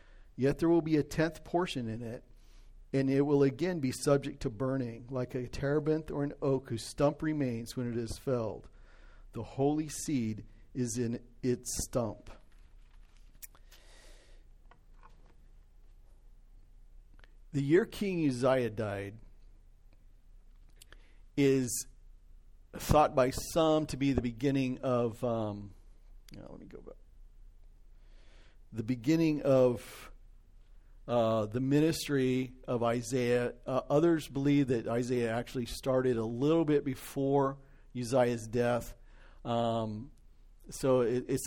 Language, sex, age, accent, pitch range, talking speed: English, male, 50-69, American, 115-140 Hz, 115 wpm